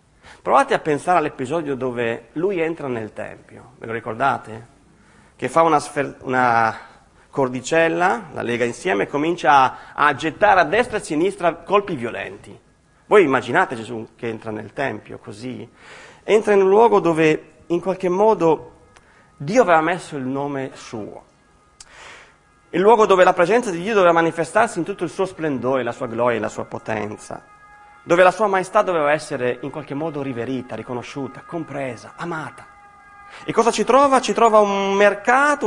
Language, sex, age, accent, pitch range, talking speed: Italian, male, 30-49, native, 130-205 Hz, 160 wpm